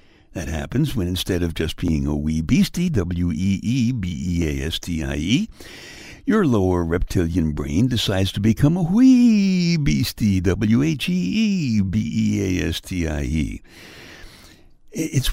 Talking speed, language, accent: 95 wpm, English, American